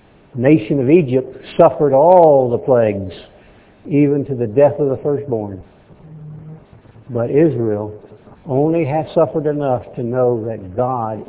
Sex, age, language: male, 60-79, English